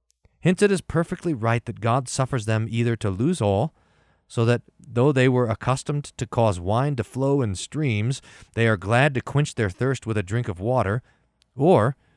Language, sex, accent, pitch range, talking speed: English, male, American, 105-140 Hz, 190 wpm